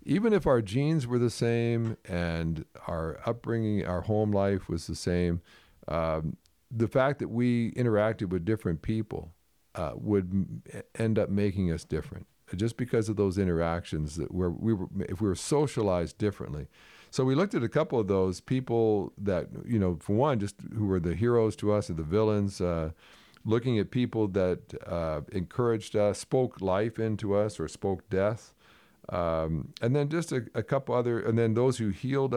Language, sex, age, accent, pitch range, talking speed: English, male, 50-69, American, 90-115 Hz, 185 wpm